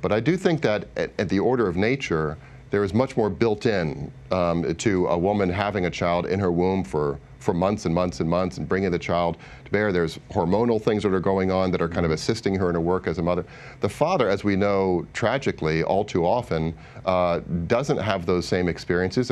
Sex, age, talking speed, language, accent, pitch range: male, 40-59, 225 wpm, English, American, 85-100 Hz